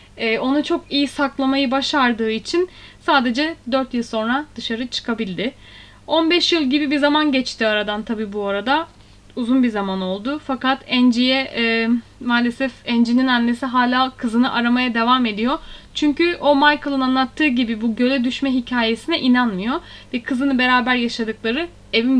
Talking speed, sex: 145 wpm, female